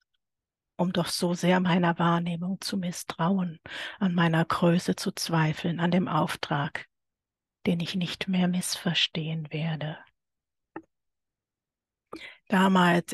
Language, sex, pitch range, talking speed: German, female, 165-185 Hz, 105 wpm